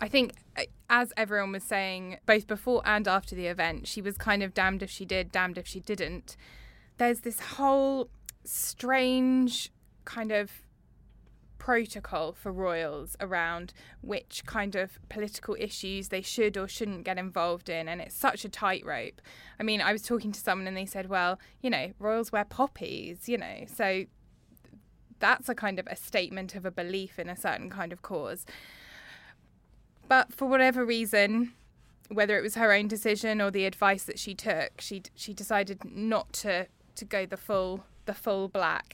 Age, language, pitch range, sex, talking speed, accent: 10-29, English, 185-225 Hz, female, 175 wpm, British